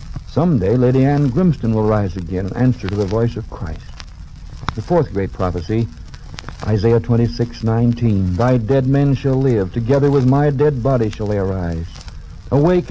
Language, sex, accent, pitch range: English, male, American, 105-135 Hz